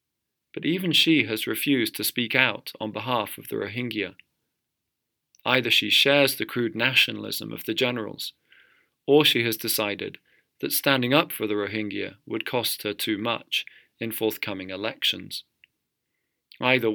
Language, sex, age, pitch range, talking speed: English, male, 40-59, 110-135 Hz, 145 wpm